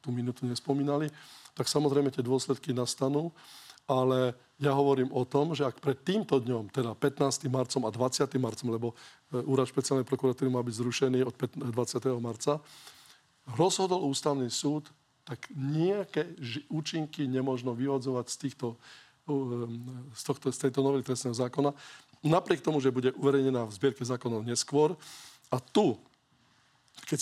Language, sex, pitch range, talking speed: Slovak, male, 125-145 Hz, 135 wpm